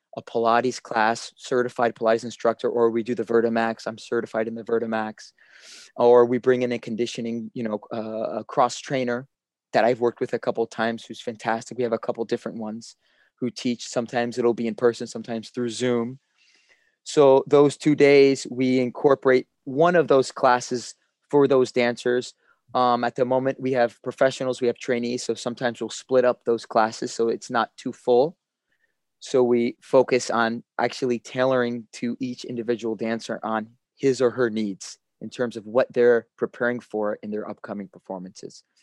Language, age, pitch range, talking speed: English, 20-39, 115-130 Hz, 180 wpm